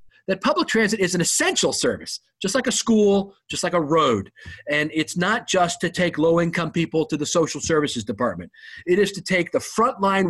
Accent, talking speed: American, 200 wpm